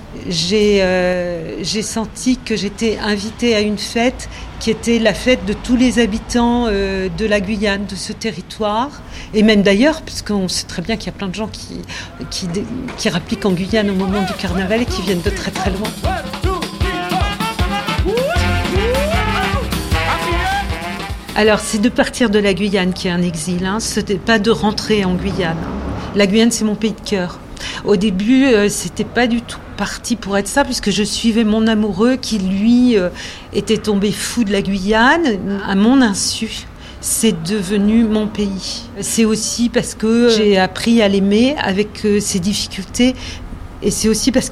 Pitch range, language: 200-230 Hz, French